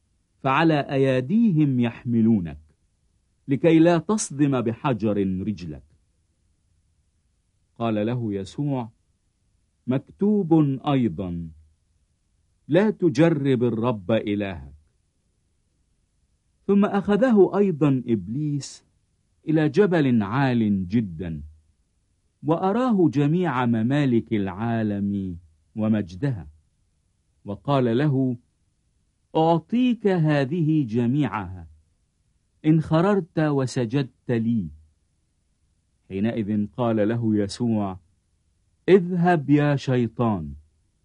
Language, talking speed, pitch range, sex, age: English, 65 wpm, 85-140 Hz, male, 50-69